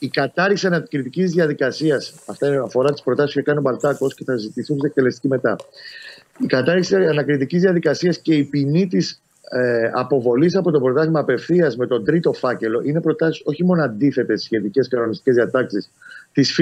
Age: 30-49